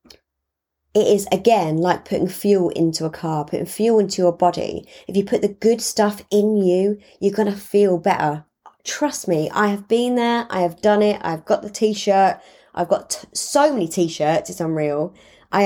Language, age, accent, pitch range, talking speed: English, 20-39, British, 170-215 Hz, 190 wpm